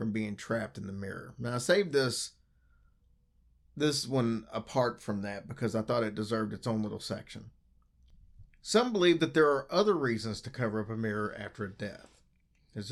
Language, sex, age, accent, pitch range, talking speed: English, male, 40-59, American, 95-135 Hz, 185 wpm